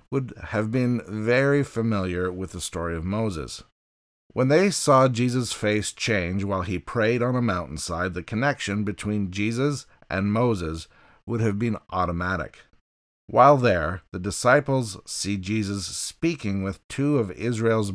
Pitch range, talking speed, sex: 90-120 Hz, 145 wpm, male